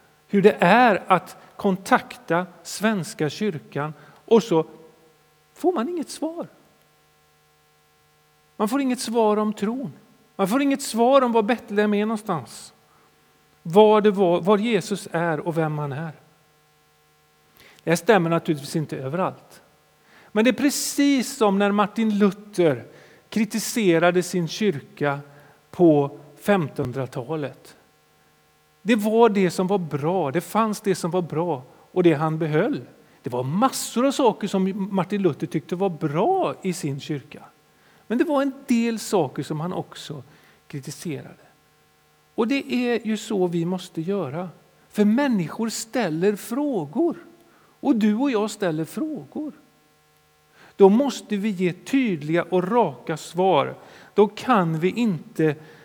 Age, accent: 40-59, native